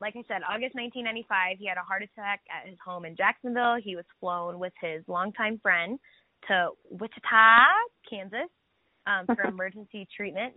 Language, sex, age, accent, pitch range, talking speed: English, female, 20-39, American, 175-210 Hz, 165 wpm